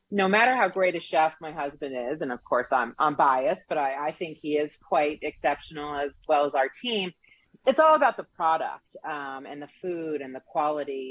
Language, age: English, 40-59